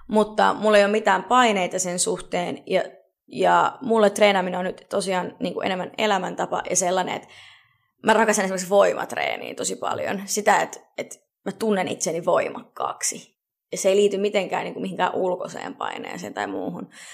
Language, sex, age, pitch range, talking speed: Finnish, female, 20-39, 185-215 Hz, 160 wpm